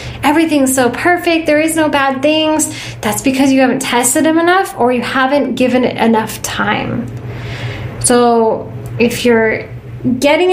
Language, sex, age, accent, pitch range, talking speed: English, female, 10-29, American, 235-290 Hz, 150 wpm